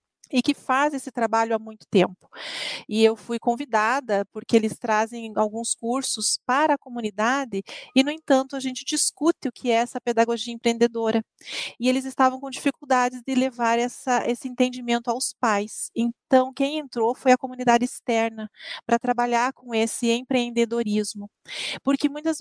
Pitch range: 225-265 Hz